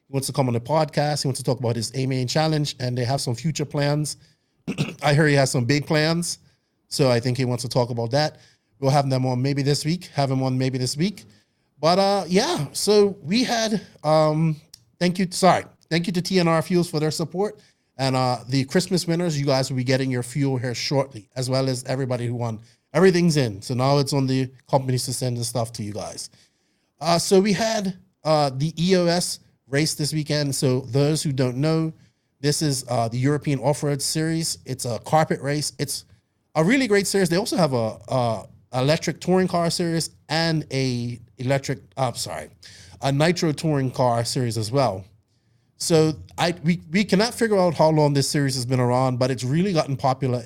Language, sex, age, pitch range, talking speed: English, male, 30-49, 125-160 Hz, 210 wpm